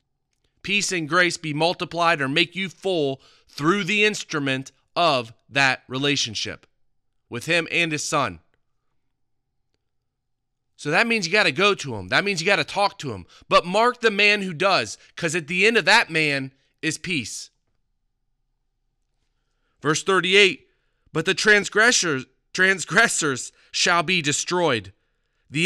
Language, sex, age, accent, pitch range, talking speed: English, male, 30-49, American, 130-195 Hz, 145 wpm